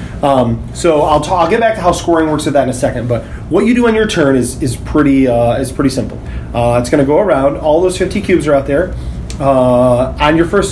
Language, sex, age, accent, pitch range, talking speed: English, male, 30-49, American, 130-165 Hz, 265 wpm